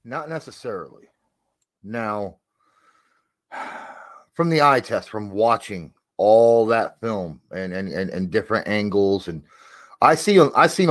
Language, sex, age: English, male, 30-49